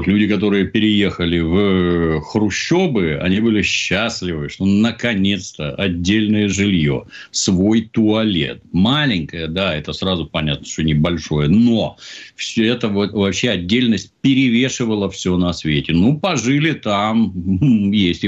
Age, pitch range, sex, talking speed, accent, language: 50-69, 85-110 Hz, male, 110 wpm, native, Russian